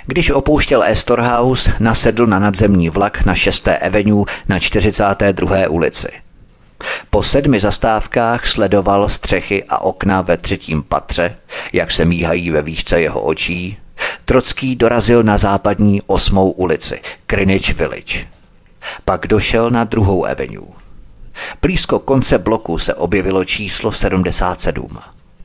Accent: native